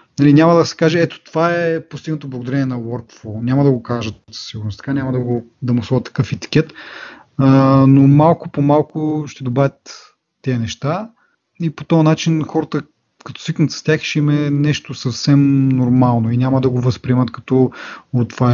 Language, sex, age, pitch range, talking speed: Bulgarian, male, 30-49, 115-145 Hz, 180 wpm